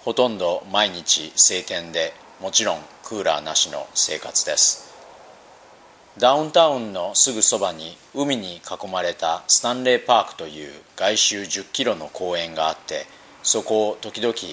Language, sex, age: Japanese, male, 40-59